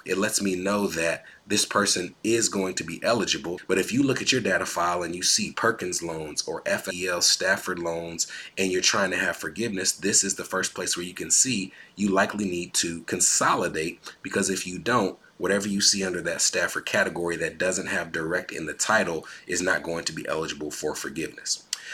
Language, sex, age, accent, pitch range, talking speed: English, male, 30-49, American, 85-100 Hz, 205 wpm